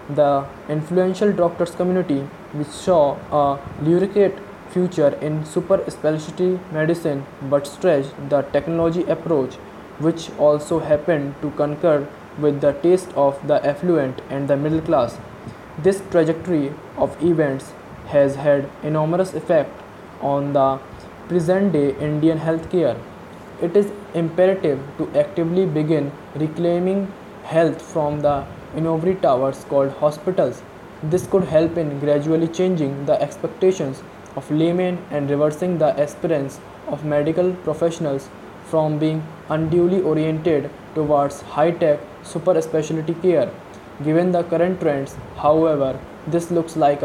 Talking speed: 120 wpm